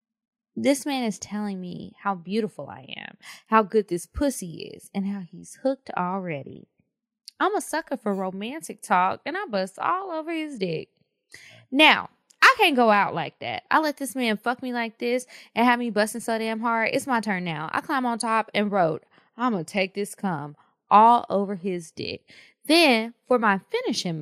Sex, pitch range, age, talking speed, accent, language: female, 190-255 Hz, 20-39, 190 wpm, American, English